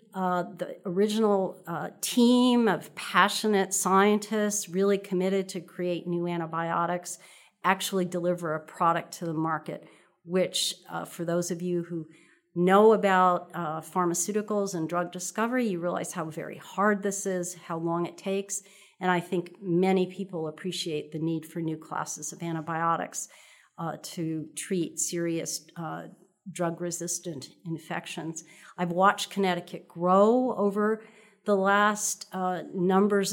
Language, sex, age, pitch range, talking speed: English, female, 40-59, 175-200 Hz, 135 wpm